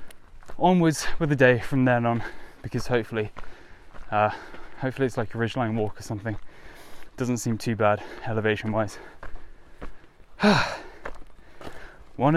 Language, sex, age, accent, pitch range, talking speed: English, male, 10-29, British, 85-130 Hz, 120 wpm